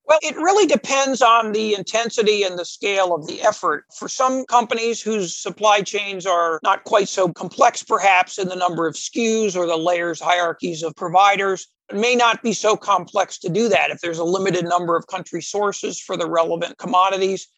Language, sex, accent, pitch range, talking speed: English, male, American, 175-210 Hz, 195 wpm